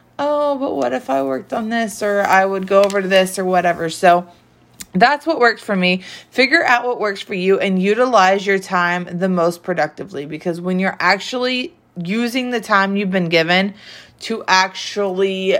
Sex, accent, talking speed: female, American, 185 wpm